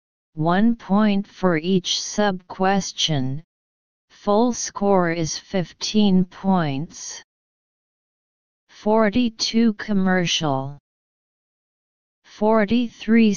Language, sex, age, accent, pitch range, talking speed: English, female, 30-49, American, 170-225 Hz, 60 wpm